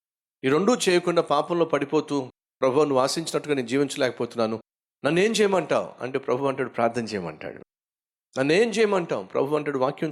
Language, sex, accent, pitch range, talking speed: Telugu, male, native, 130-160 Hz, 135 wpm